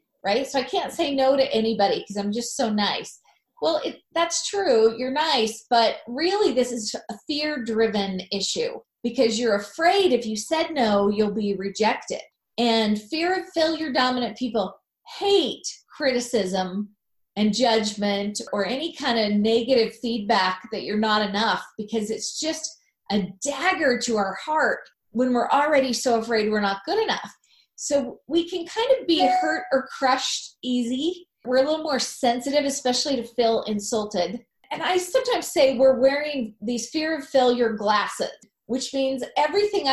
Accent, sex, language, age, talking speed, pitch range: American, female, English, 30-49, 160 wpm, 220-290 Hz